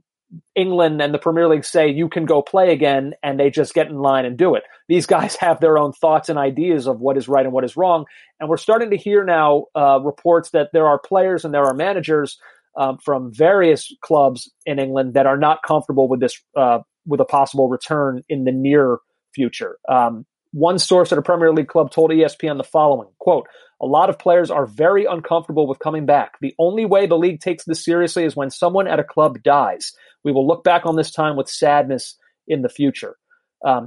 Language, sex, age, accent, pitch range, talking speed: English, male, 30-49, American, 140-175 Hz, 220 wpm